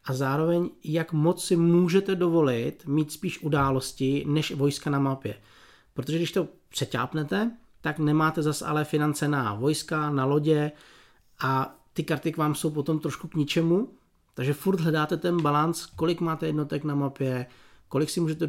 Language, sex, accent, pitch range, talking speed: Czech, male, native, 130-165 Hz, 160 wpm